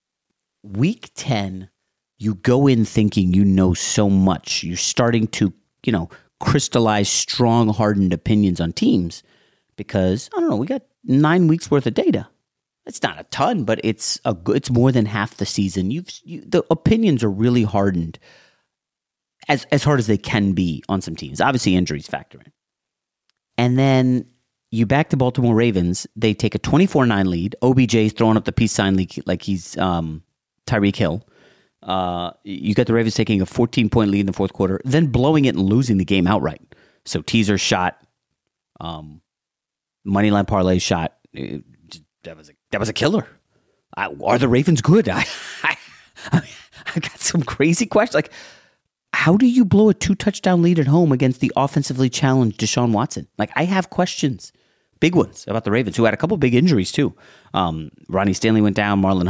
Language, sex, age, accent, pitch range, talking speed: English, male, 40-59, American, 95-130 Hz, 175 wpm